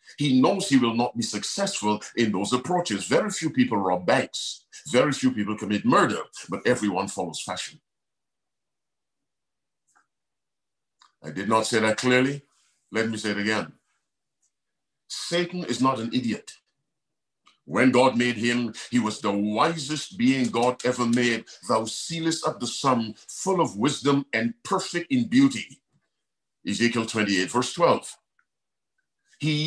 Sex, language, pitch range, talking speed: male, English, 110-155 Hz, 140 wpm